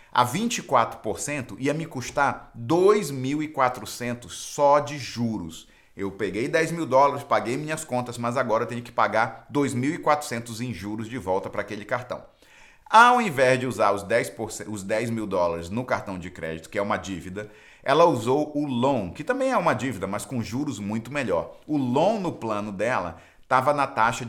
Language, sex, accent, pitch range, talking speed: English, male, Brazilian, 110-150 Hz, 175 wpm